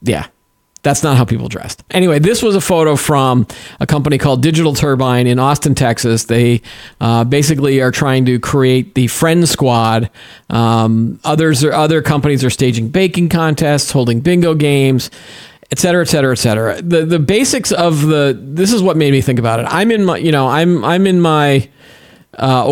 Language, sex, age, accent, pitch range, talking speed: English, male, 40-59, American, 125-155 Hz, 180 wpm